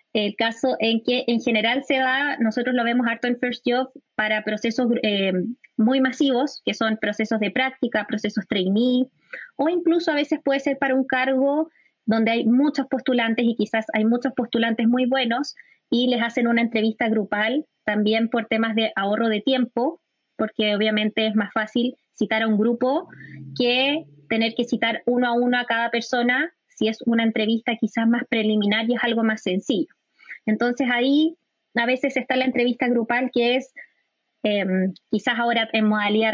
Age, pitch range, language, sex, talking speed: 20-39, 225-260 Hz, Spanish, female, 175 wpm